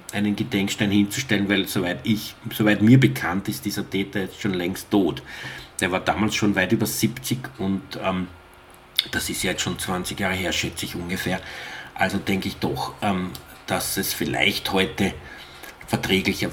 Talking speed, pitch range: 165 wpm, 105-125 Hz